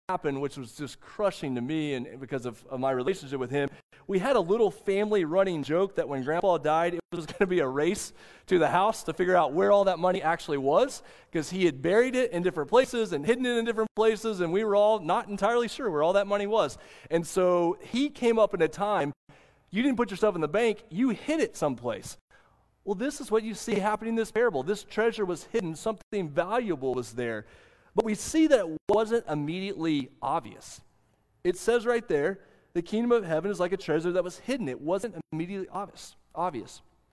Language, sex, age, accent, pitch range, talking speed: English, male, 30-49, American, 145-215 Hz, 220 wpm